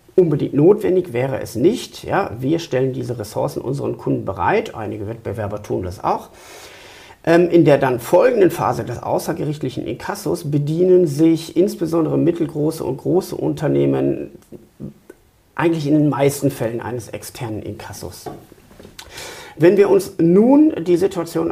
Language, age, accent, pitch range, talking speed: German, 50-69, German, 120-175 Hz, 130 wpm